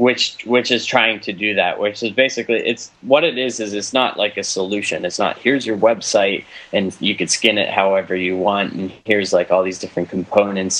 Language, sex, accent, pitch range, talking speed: English, male, American, 95-115 Hz, 220 wpm